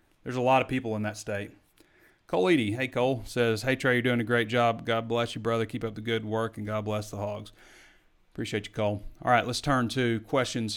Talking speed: 240 wpm